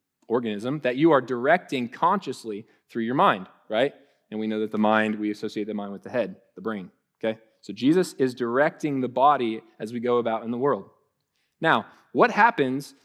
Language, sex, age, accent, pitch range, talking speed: English, male, 20-39, American, 130-170 Hz, 195 wpm